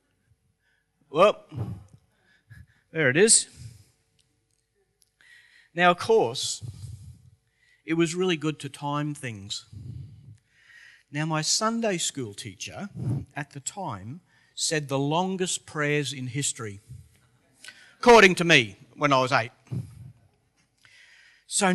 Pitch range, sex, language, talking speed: 115-165 Hz, male, English, 100 wpm